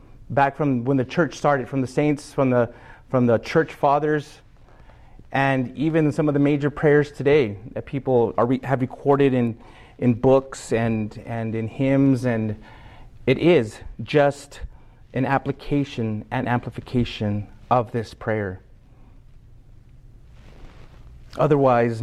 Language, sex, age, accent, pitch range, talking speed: English, male, 30-49, American, 115-140 Hz, 130 wpm